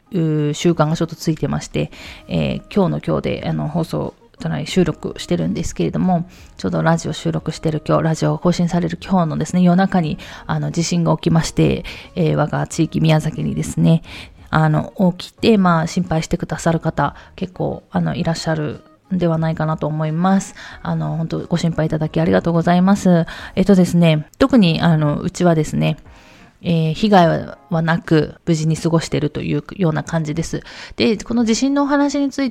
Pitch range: 155-185 Hz